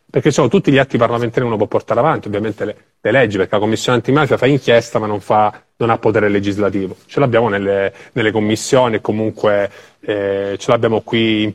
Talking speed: 210 wpm